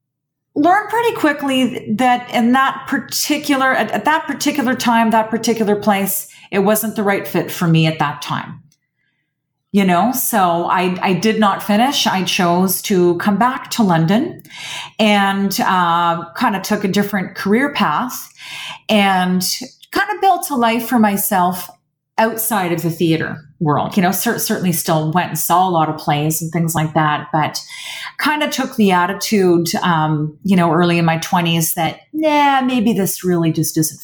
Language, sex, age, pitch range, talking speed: English, female, 40-59, 170-225 Hz, 170 wpm